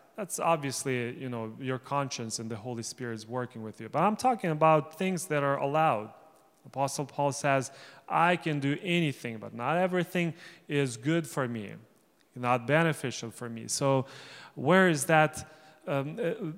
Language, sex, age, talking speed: English, male, 30-49, 165 wpm